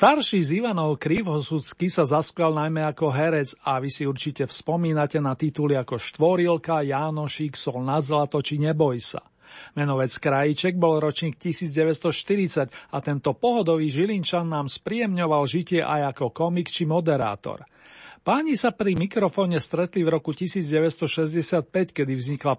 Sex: male